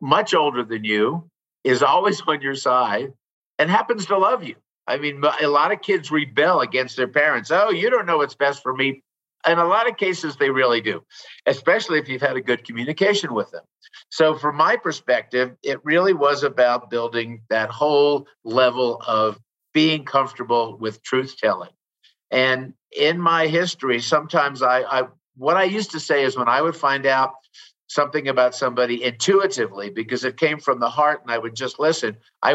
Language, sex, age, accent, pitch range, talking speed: English, male, 50-69, American, 125-170 Hz, 185 wpm